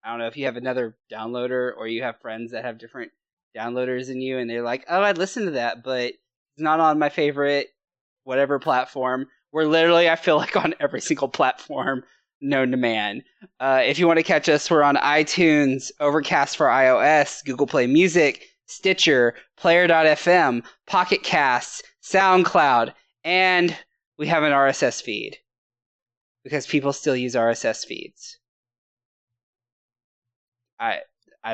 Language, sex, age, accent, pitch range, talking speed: English, male, 20-39, American, 125-165 Hz, 155 wpm